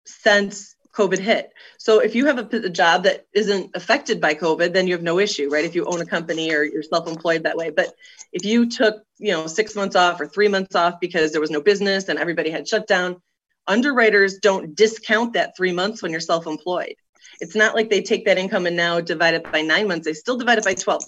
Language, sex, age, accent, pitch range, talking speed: English, female, 30-49, American, 170-215 Hz, 235 wpm